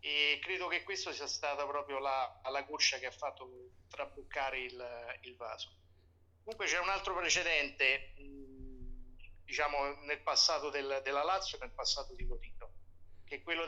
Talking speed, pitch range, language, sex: 150 wpm, 125-155 Hz, Italian, male